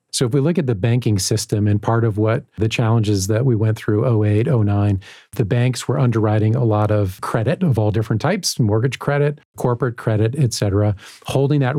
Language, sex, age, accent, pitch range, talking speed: English, male, 40-59, American, 110-135 Hz, 205 wpm